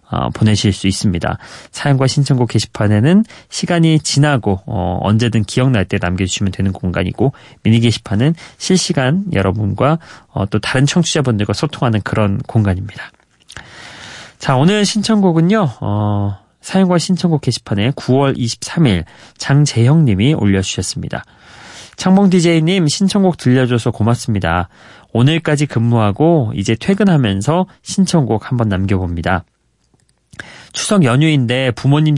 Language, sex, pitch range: Korean, male, 110-150 Hz